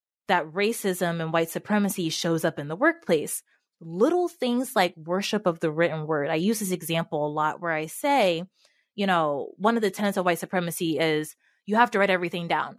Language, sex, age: English, female, 20-39